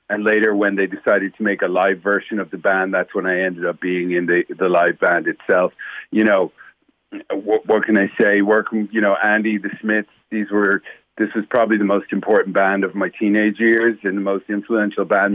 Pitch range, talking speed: 100-115 Hz, 210 wpm